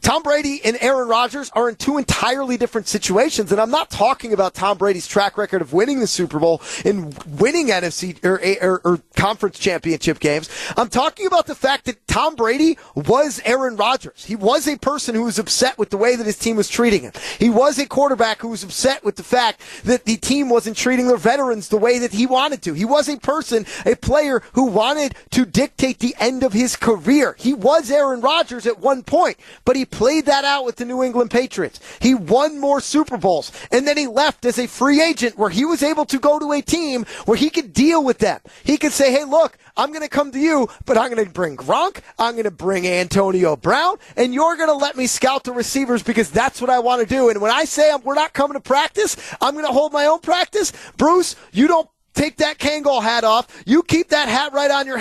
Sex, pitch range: male, 225-290 Hz